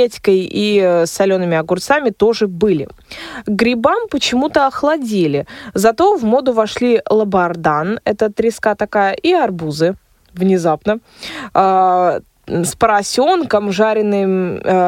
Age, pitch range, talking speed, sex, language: 20-39, 185-250 Hz, 90 wpm, female, Russian